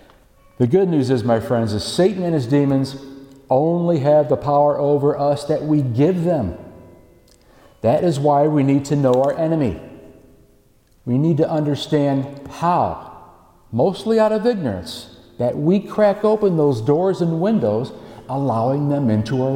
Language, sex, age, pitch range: English, male, 50-69, 115-150 Hz